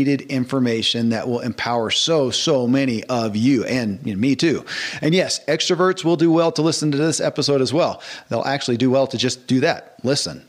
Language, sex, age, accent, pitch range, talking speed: English, male, 40-59, American, 120-150 Hz, 205 wpm